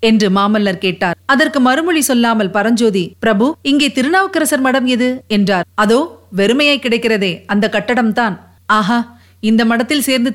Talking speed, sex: 130 wpm, female